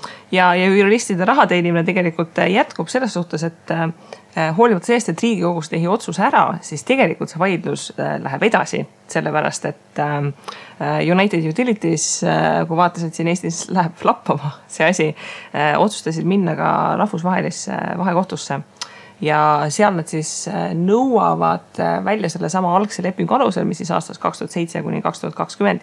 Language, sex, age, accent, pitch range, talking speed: English, female, 20-39, Finnish, 160-195 Hz, 150 wpm